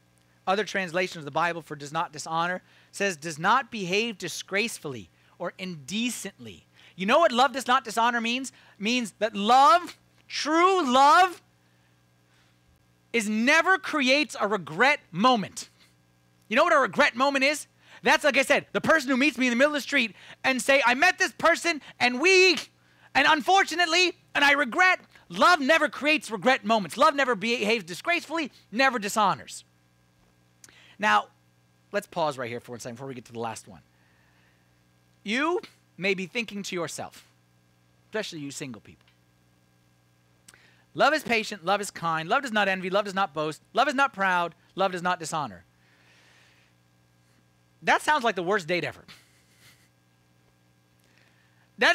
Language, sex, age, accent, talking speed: English, male, 30-49, American, 155 wpm